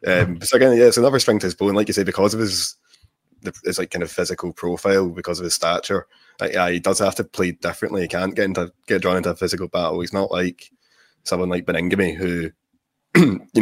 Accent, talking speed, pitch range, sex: British, 230 wpm, 85-95 Hz, male